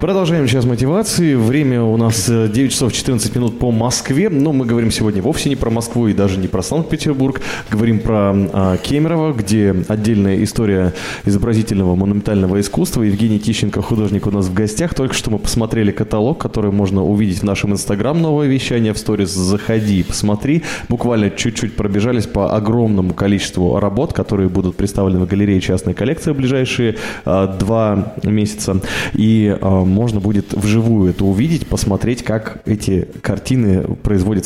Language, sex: Russian, male